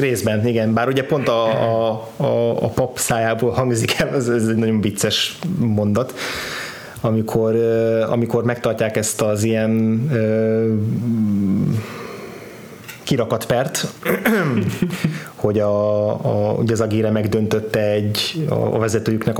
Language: Hungarian